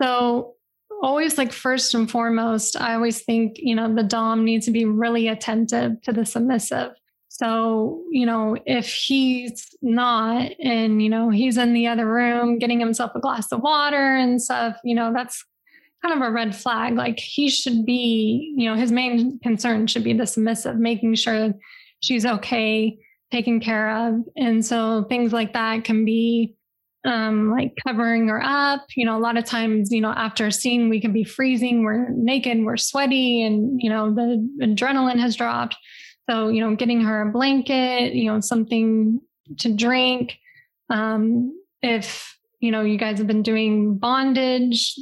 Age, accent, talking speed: 20-39, American, 175 wpm